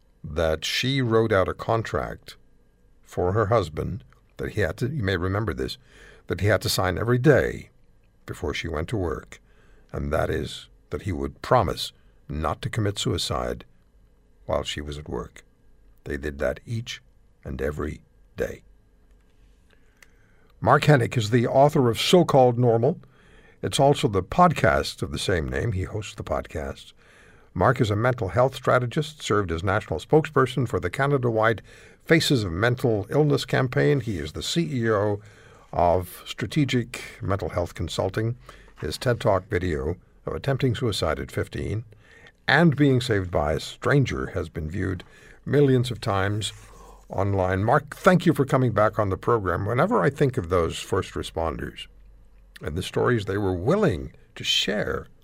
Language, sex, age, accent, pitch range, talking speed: English, male, 60-79, American, 95-130 Hz, 160 wpm